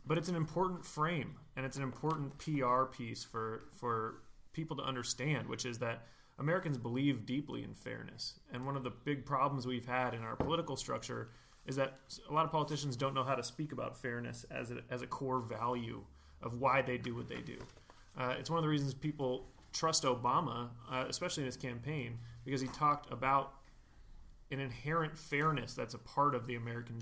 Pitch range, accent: 120-140 Hz, American